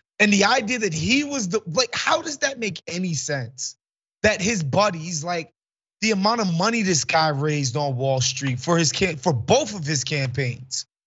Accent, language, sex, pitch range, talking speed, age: American, English, male, 140-205 Hz, 195 wpm, 30-49